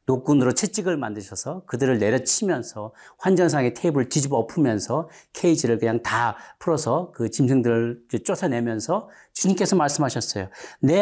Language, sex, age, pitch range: Korean, male, 40-59, 105-160 Hz